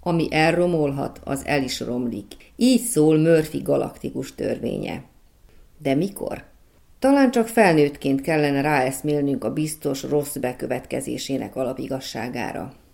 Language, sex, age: Hungarian, female, 40-59